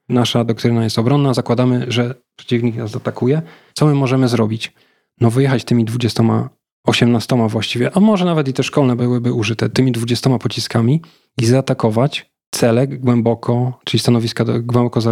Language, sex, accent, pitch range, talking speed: Polish, male, native, 115-135 Hz, 150 wpm